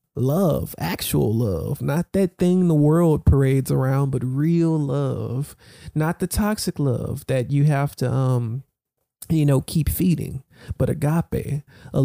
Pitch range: 135-170 Hz